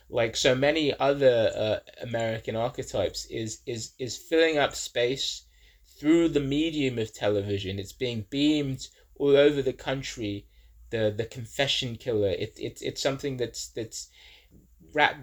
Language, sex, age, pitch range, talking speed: English, male, 20-39, 110-135 Hz, 140 wpm